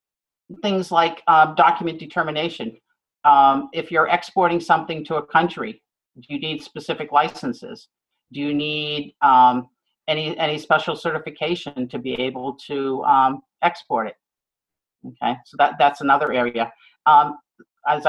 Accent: American